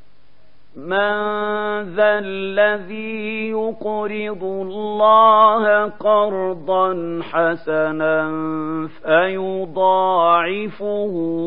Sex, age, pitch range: male, 50-69, 180-210 Hz